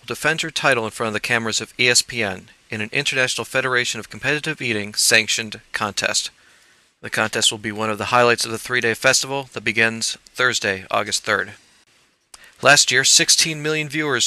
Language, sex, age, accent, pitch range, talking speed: English, male, 40-59, American, 110-130 Hz, 175 wpm